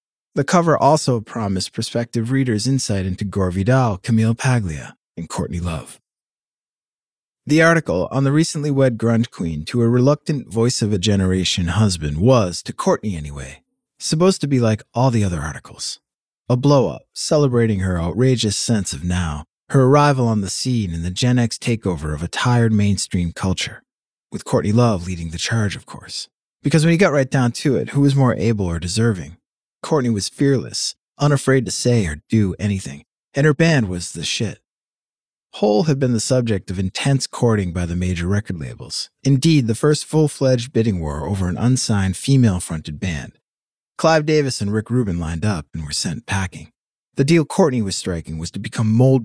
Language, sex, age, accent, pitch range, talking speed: English, male, 30-49, American, 95-130 Hz, 175 wpm